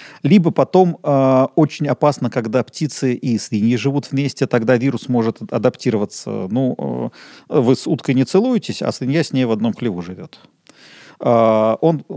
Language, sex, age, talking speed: Russian, male, 40-59, 160 wpm